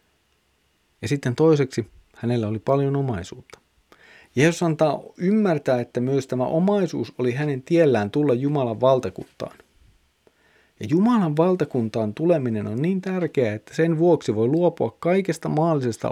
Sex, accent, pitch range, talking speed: male, native, 105-135 Hz, 130 wpm